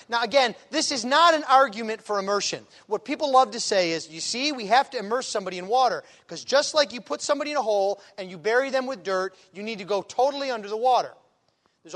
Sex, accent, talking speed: male, American, 240 wpm